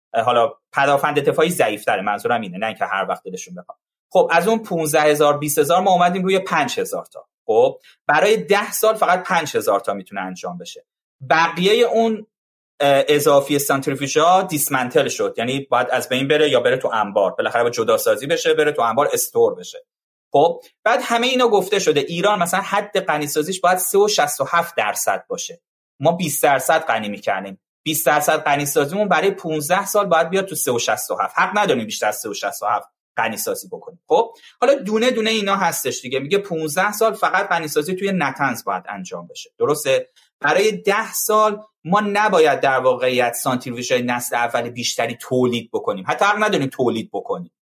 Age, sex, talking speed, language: 30-49, male, 170 wpm, Persian